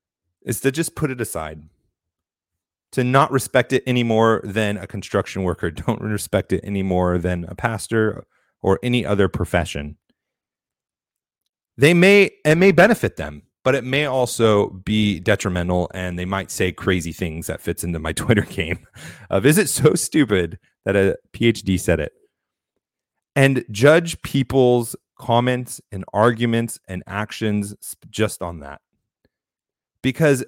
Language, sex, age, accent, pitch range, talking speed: English, male, 30-49, American, 95-135 Hz, 140 wpm